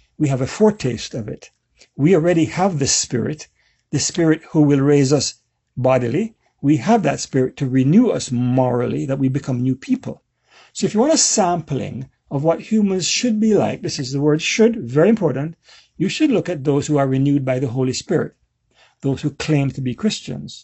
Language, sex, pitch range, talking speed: English, male, 130-160 Hz, 200 wpm